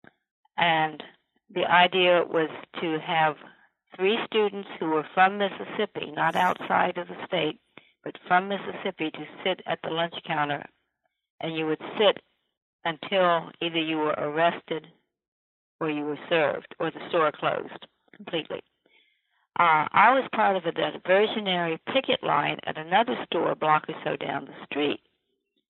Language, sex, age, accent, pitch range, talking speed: English, female, 60-79, American, 160-195 Hz, 145 wpm